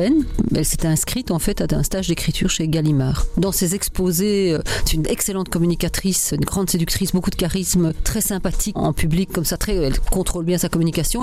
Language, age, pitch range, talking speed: French, 40-59, 165-200 Hz, 200 wpm